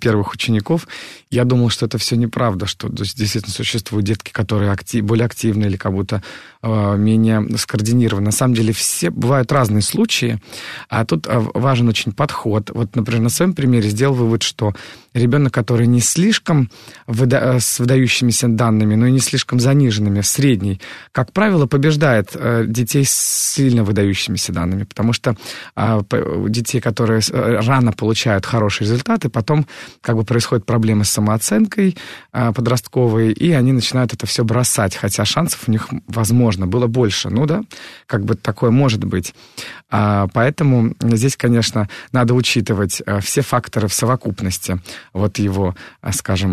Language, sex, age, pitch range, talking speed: Russian, male, 30-49, 105-125 Hz, 150 wpm